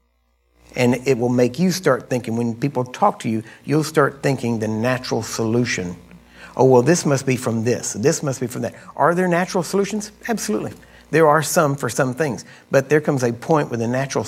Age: 50-69